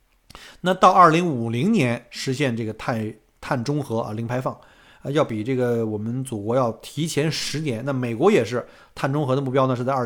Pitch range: 130-185 Hz